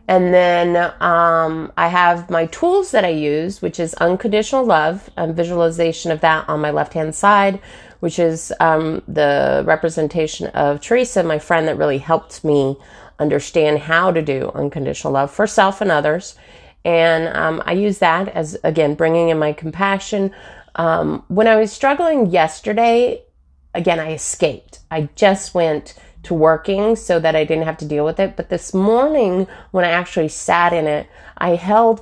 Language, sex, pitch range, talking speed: English, female, 150-185 Hz, 170 wpm